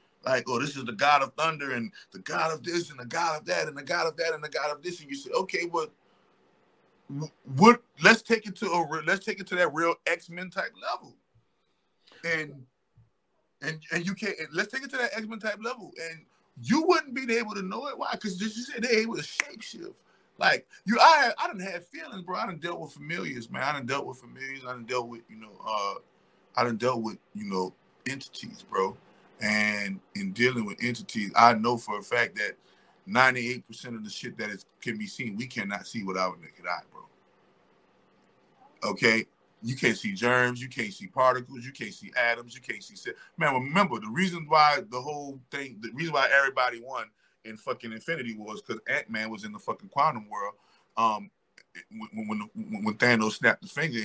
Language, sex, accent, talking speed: English, male, American, 210 wpm